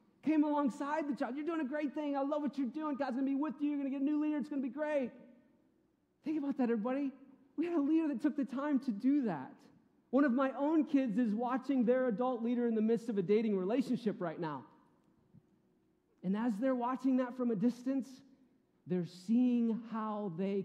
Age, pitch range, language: 40-59, 195-260 Hz, English